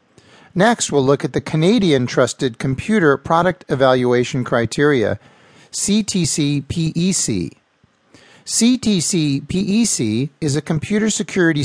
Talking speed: 90 wpm